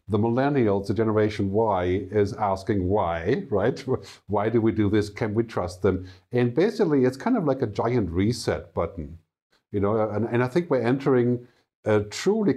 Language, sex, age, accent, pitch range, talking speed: English, male, 50-69, German, 100-130 Hz, 180 wpm